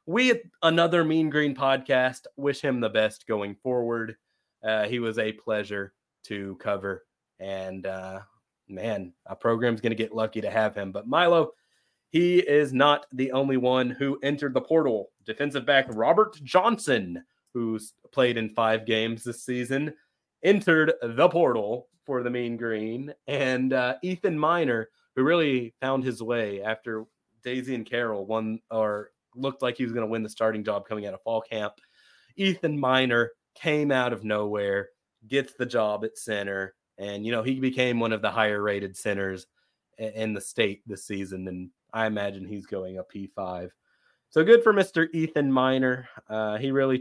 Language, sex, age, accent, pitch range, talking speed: English, male, 30-49, American, 105-135 Hz, 170 wpm